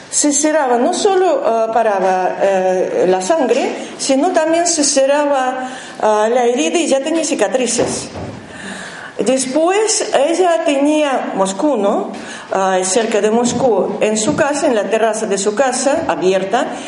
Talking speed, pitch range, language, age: 120 wpm, 210-290 Hz, Spanish, 50-69